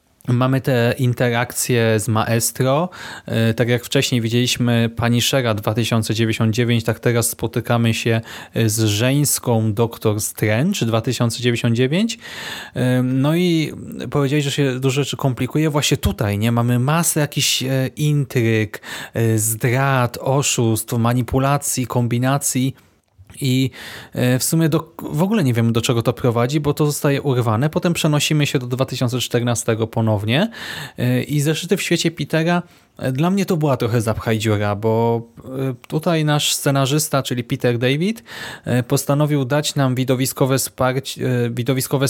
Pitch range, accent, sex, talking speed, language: 115-145 Hz, native, male, 125 wpm, Polish